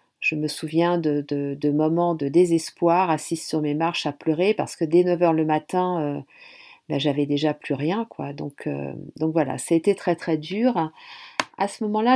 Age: 40-59